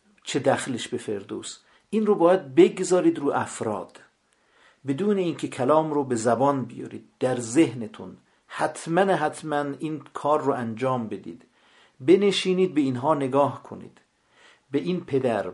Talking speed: 130 wpm